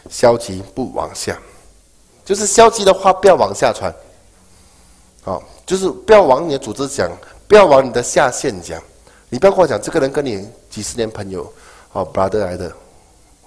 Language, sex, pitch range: Chinese, male, 95-145 Hz